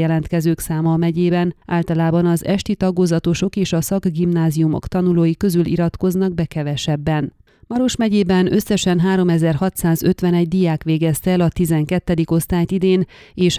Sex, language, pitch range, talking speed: female, Hungarian, 160-185 Hz, 120 wpm